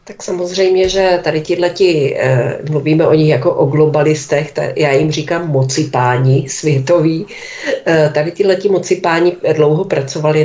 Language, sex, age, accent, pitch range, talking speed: Czech, female, 40-59, native, 145-175 Hz, 145 wpm